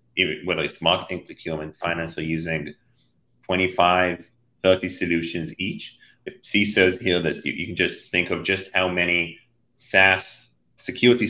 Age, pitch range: 30-49, 85-100 Hz